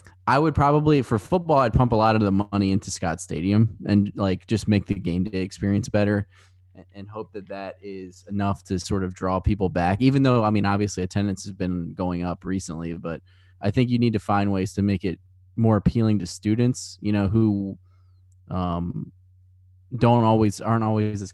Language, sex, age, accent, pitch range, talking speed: English, male, 20-39, American, 95-105 Hz, 200 wpm